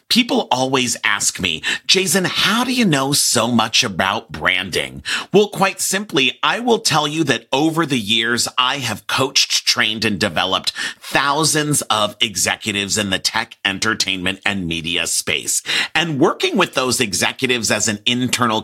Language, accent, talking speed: English, American, 155 wpm